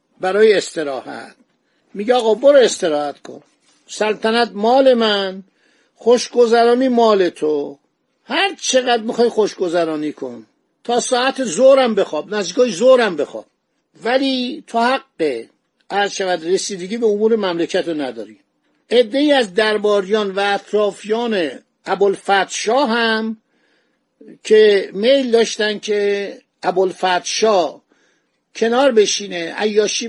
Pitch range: 195-250 Hz